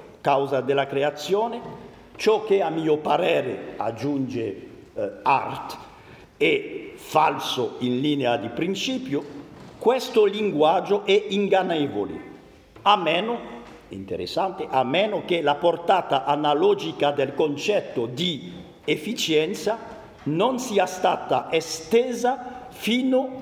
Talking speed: 100 wpm